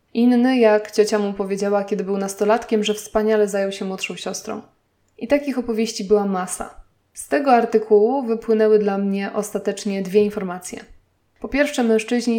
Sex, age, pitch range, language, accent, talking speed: female, 20-39, 200-225 Hz, Polish, native, 150 wpm